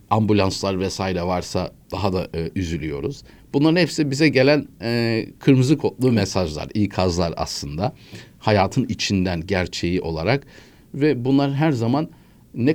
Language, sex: Turkish, male